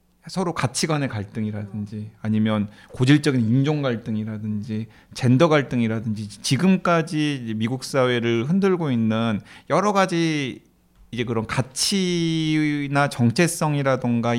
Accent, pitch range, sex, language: native, 115-175 Hz, male, Korean